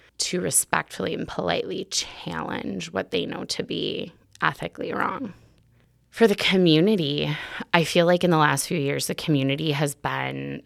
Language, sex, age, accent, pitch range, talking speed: English, female, 20-39, American, 125-155 Hz, 150 wpm